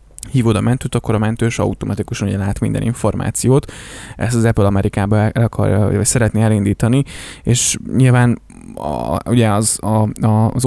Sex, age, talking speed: male, 20-39, 145 wpm